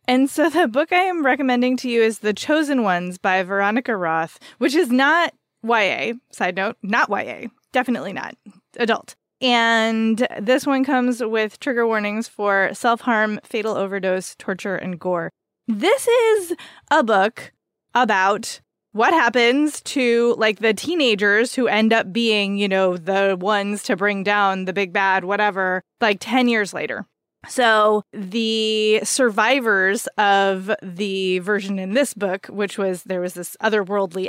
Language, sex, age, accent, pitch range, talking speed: English, female, 20-39, American, 195-250 Hz, 150 wpm